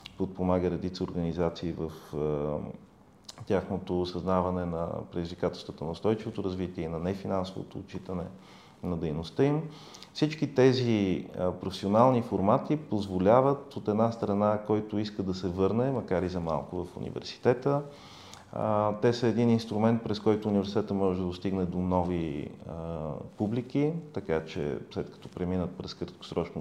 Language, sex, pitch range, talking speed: Bulgarian, male, 90-115 Hz, 140 wpm